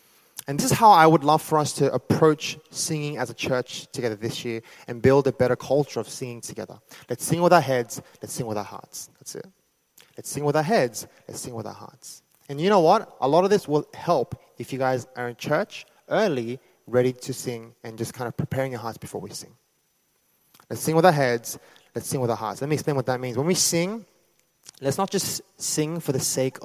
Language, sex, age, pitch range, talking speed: English, male, 20-39, 130-170 Hz, 235 wpm